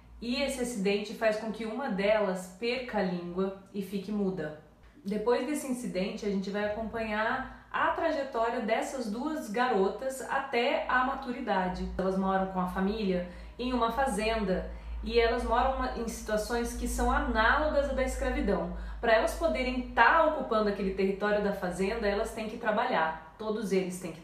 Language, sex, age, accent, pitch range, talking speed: Portuguese, female, 20-39, Brazilian, 195-240 Hz, 165 wpm